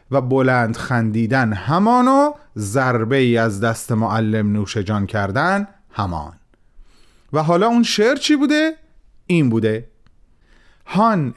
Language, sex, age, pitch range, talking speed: Persian, male, 30-49, 115-185 Hz, 120 wpm